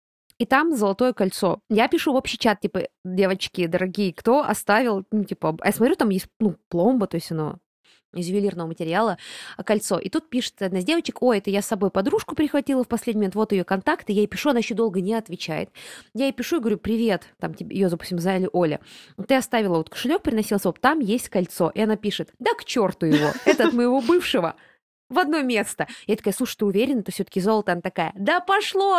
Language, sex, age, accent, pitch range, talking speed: Russian, female, 20-39, native, 195-265 Hz, 215 wpm